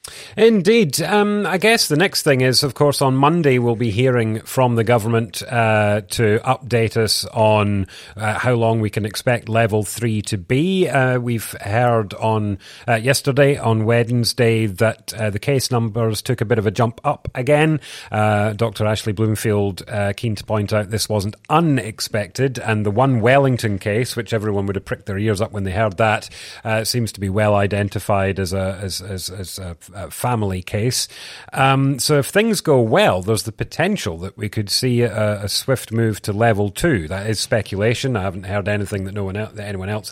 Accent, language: British, English